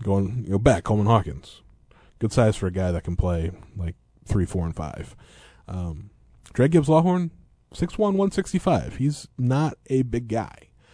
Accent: American